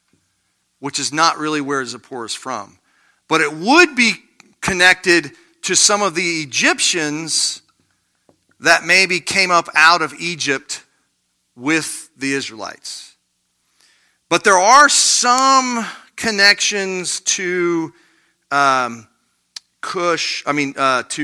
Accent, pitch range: American, 135-180 Hz